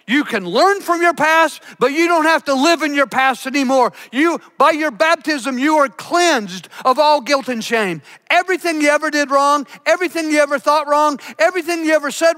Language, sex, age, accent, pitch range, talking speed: English, male, 50-69, American, 250-320 Hz, 205 wpm